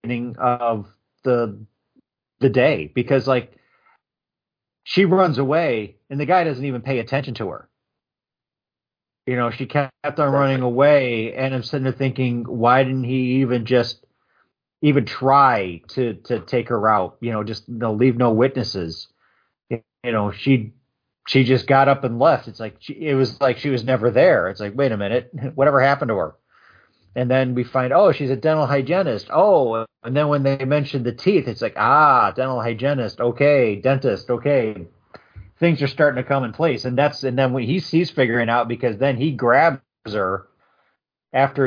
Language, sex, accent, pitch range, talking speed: English, male, American, 115-140 Hz, 175 wpm